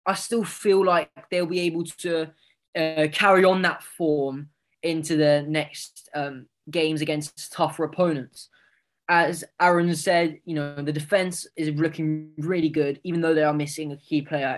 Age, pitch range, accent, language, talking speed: 10-29, 145-175 Hz, British, English, 165 wpm